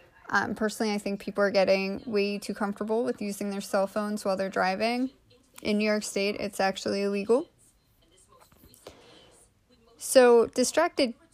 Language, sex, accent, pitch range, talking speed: English, female, American, 200-225 Hz, 145 wpm